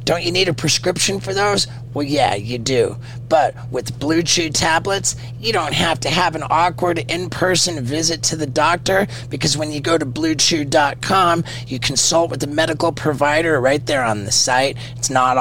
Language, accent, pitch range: English, American, 120-155 Hz